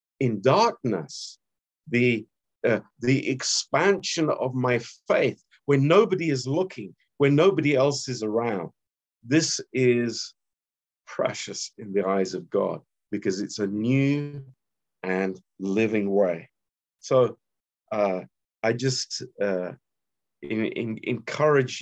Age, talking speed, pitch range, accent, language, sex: 50-69, 115 wpm, 95-130 Hz, British, Romanian, male